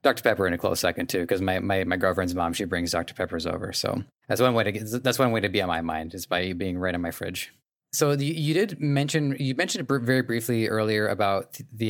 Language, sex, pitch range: English, male, 95-120 Hz